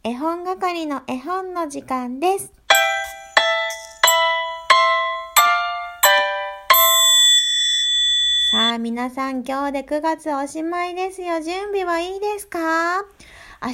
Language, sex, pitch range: Japanese, female, 220-340 Hz